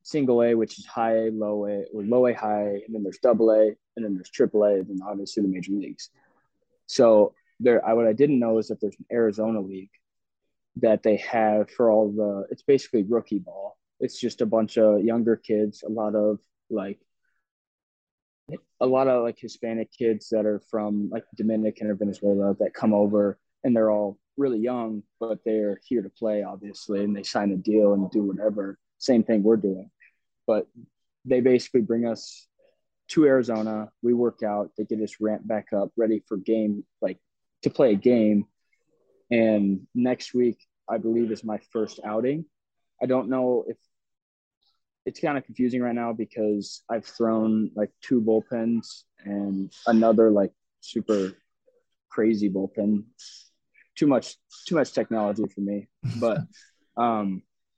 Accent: American